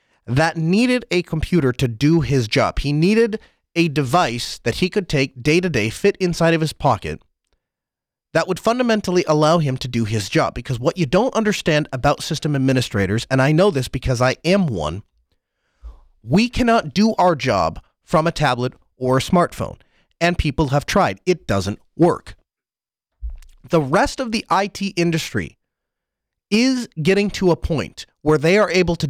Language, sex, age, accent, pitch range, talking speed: English, male, 30-49, American, 130-185 Hz, 165 wpm